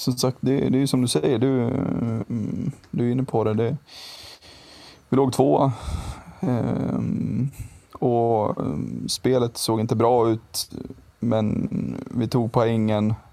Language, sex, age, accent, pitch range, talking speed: Swedish, male, 20-39, native, 100-120 Hz, 140 wpm